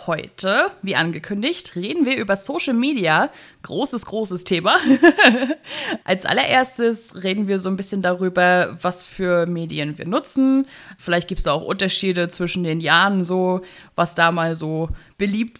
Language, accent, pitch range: German, German, 175-235 Hz